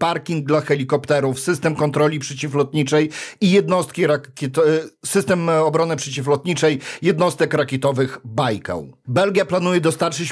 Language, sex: Polish, male